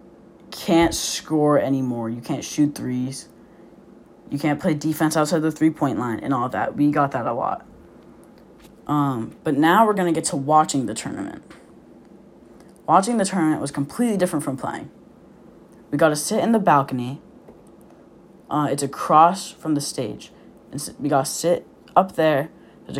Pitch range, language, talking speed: 140-165 Hz, English, 165 wpm